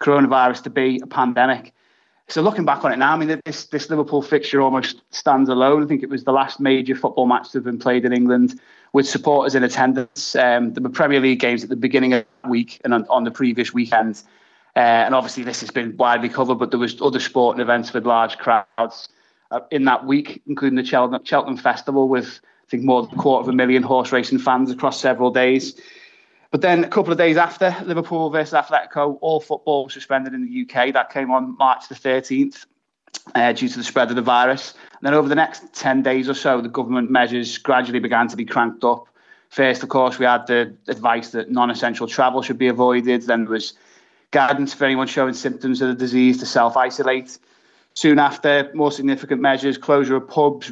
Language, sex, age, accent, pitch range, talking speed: English, male, 20-39, British, 125-145 Hz, 215 wpm